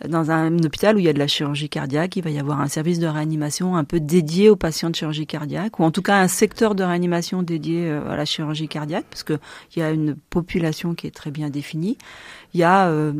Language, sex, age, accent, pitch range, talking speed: French, female, 40-59, French, 150-195 Hz, 250 wpm